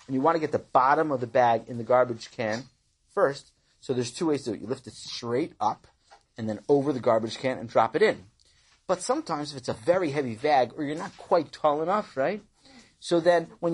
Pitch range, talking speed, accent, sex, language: 150-225 Hz, 240 wpm, American, male, English